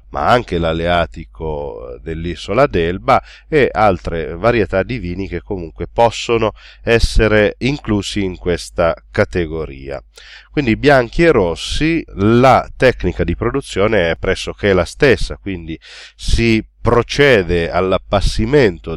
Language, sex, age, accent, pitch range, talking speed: Italian, male, 40-59, native, 85-110 Hz, 110 wpm